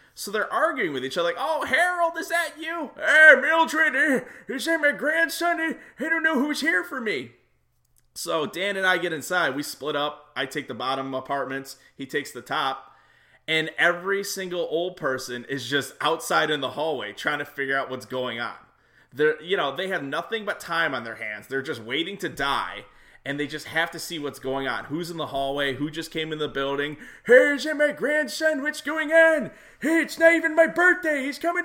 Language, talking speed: English, 210 wpm